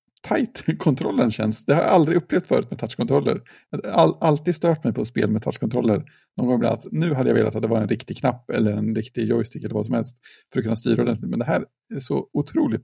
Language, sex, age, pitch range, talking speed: Swedish, male, 50-69, 120-170 Hz, 235 wpm